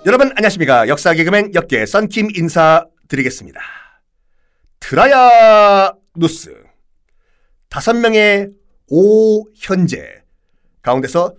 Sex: male